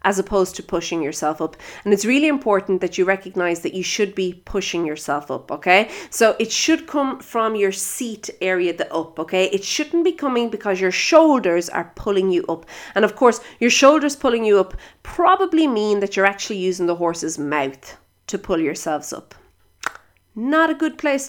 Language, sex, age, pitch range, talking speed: English, female, 30-49, 185-275 Hz, 190 wpm